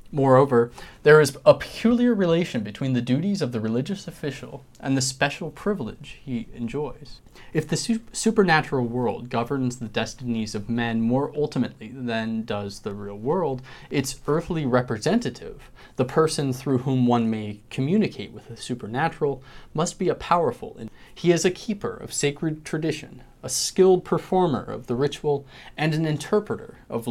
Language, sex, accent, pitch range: English, male, American, 120-165 Hz